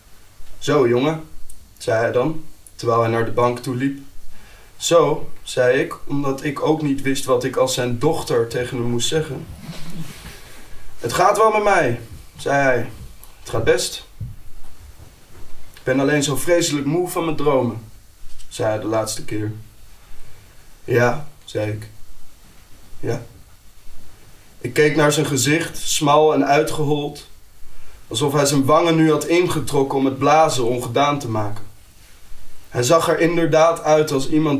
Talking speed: 145 wpm